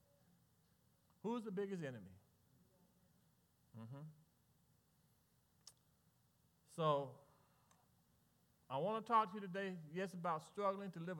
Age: 40-59